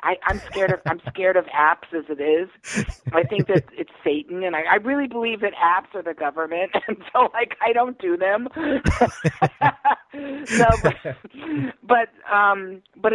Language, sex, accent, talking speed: English, female, American, 175 wpm